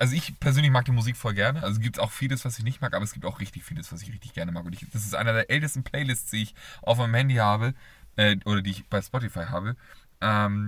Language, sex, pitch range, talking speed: German, male, 105-140 Hz, 280 wpm